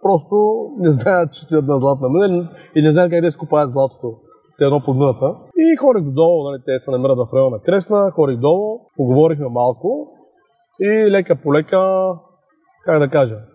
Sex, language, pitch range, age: male, Bulgarian, 145-205 Hz, 30-49